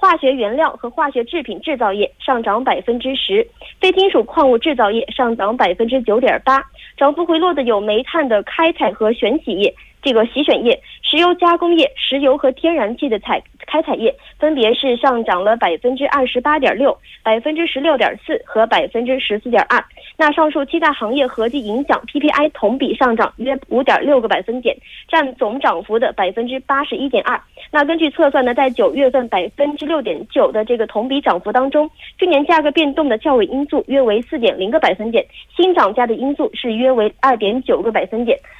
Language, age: Korean, 20-39